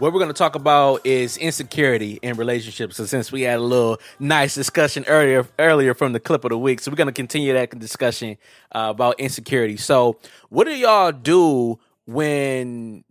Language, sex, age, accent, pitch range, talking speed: English, male, 20-39, American, 115-140 Hz, 190 wpm